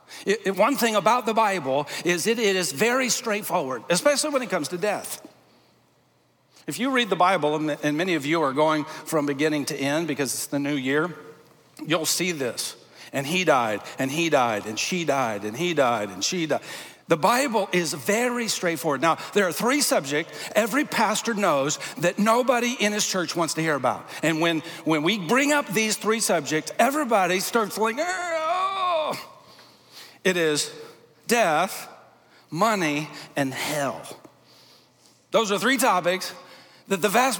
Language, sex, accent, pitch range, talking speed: English, male, American, 160-225 Hz, 170 wpm